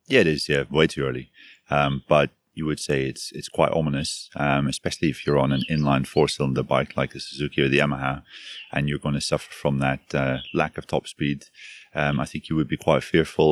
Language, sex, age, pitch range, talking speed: English, male, 30-49, 70-75 Hz, 225 wpm